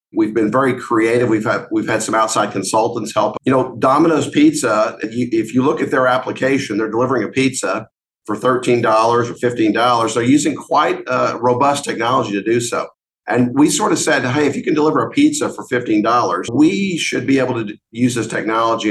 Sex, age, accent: male, 50-69, American